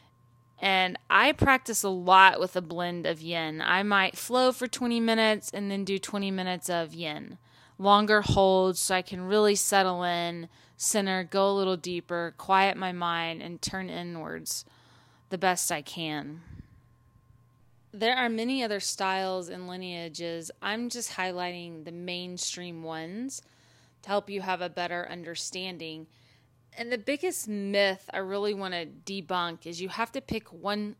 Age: 20-39